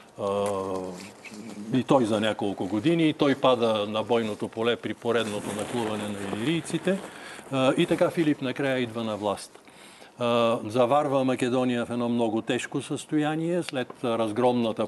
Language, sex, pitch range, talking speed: Bulgarian, male, 105-135 Hz, 130 wpm